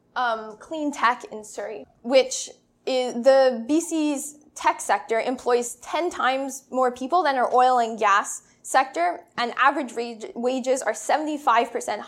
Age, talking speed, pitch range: 10-29, 140 wpm, 240-305 Hz